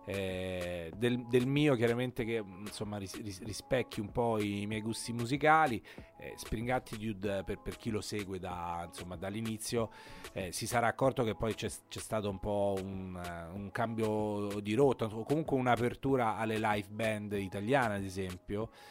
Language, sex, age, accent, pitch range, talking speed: Italian, male, 30-49, native, 100-120 Hz, 160 wpm